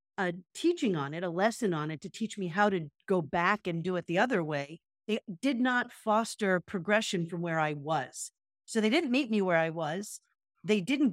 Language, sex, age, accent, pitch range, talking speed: English, female, 50-69, American, 170-225 Hz, 215 wpm